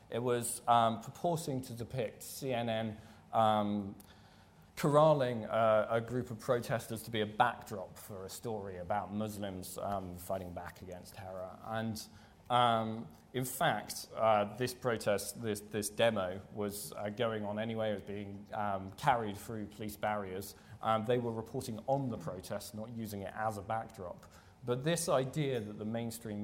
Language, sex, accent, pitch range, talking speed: English, male, British, 95-115 Hz, 160 wpm